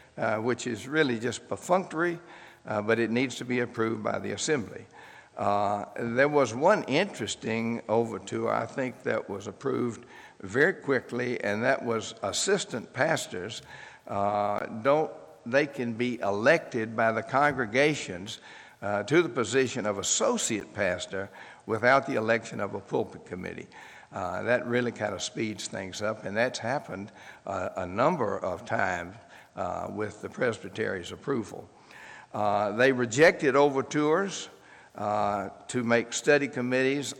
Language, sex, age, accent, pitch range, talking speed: English, male, 60-79, American, 110-140 Hz, 140 wpm